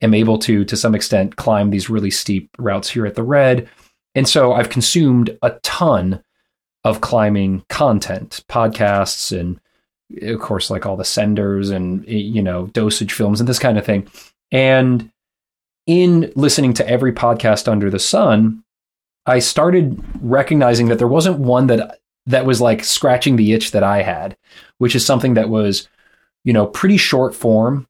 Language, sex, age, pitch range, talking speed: English, male, 30-49, 105-125 Hz, 170 wpm